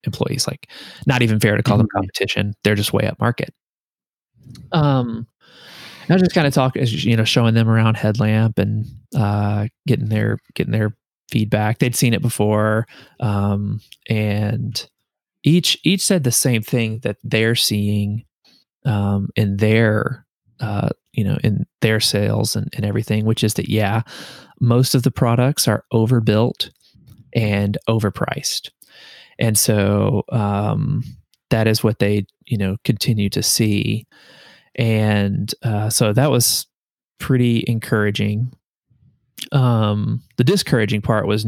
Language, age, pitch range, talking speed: English, 20-39, 105-125 Hz, 140 wpm